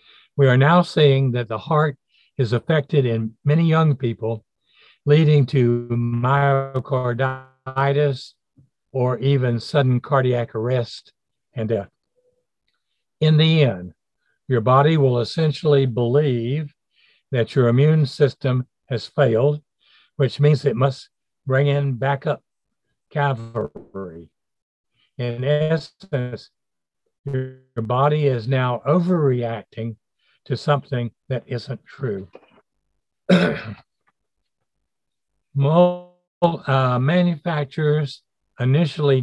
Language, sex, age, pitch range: English, male, 60-79, 120-145 Hz